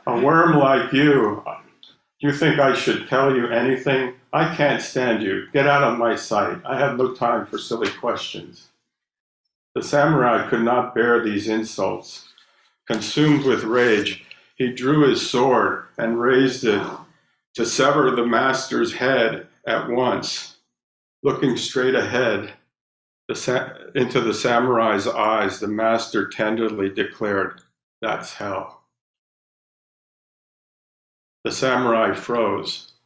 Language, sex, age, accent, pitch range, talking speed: English, male, 50-69, American, 110-130 Hz, 125 wpm